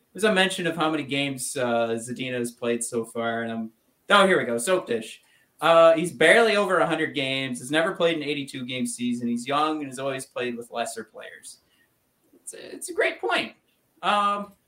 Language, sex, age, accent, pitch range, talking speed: English, male, 30-49, American, 125-170 Hz, 205 wpm